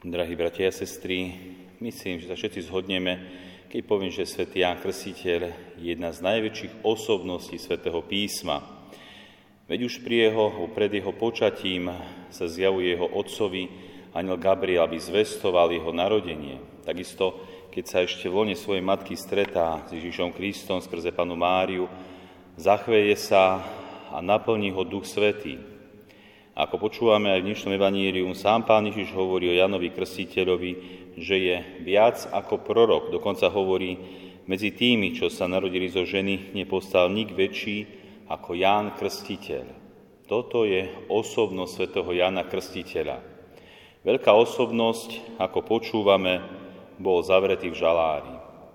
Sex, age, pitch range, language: male, 40-59, 90-100 Hz, Slovak